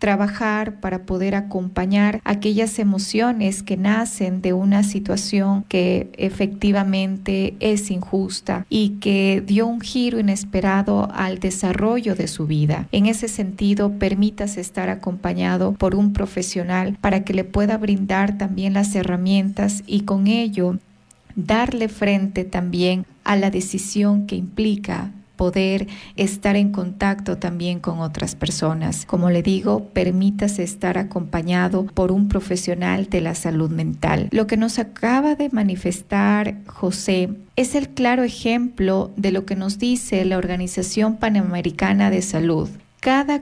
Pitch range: 185-210 Hz